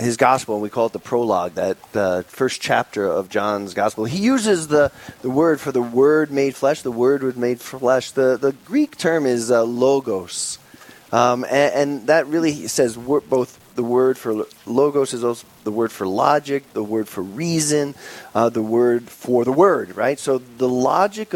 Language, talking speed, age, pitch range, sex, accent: English, 195 wpm, 30-49, 115-145 Hz, male, American